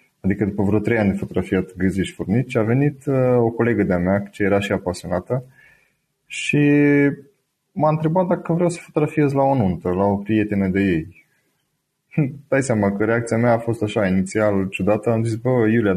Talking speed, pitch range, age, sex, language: 185 wpm, 105-145 Hz, 20-39, male, Romanian